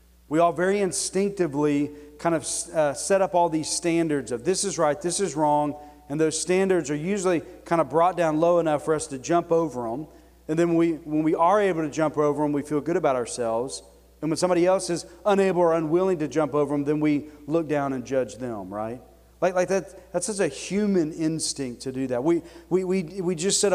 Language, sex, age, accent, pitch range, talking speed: English, male, 40-59, American, 130-175 Hz, 225 wpm